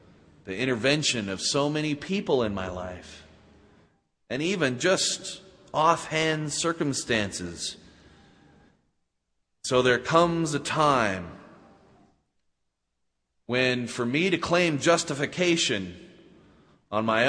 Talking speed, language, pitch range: 95 wpm, English, 100-150 Hz